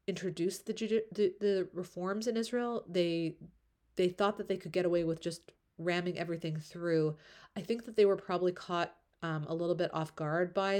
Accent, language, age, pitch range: American, English, 30-49, 160-195 Hz